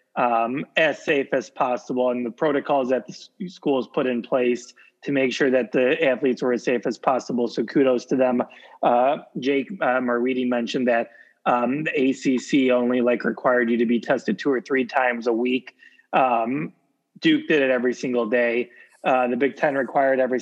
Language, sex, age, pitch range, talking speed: English, male, 20-39, 125-155 Hz, 190 wpm